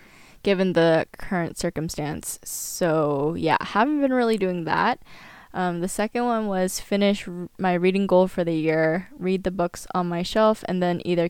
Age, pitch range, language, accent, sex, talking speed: 10-29, 165-190 Hz, English, American, female, 170 wpm